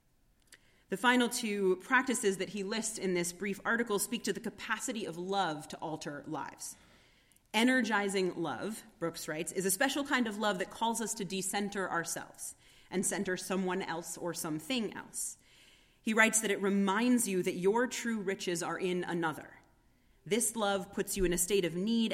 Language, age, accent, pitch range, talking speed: English, 30-49, American, 175-220 Hz, 175 wpm